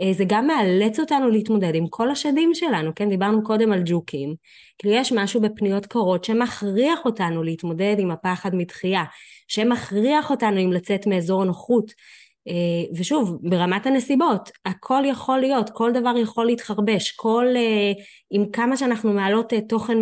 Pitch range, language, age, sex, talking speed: 190-245 Hz, Hebrew, 20-39, female, 140 wpm